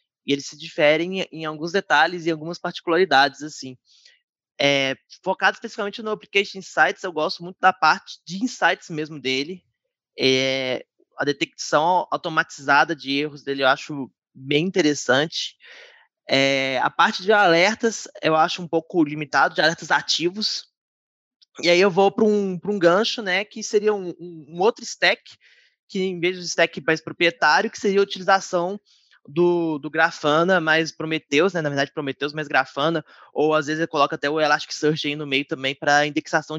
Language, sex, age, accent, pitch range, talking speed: Portuguese, male, 20-39, Brazilian, 150-200 Hz, 170 wpm